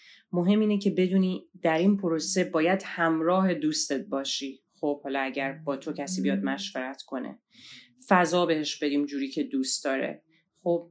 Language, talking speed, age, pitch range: Persian, 155 wpm, 30-49, 145-175 Hz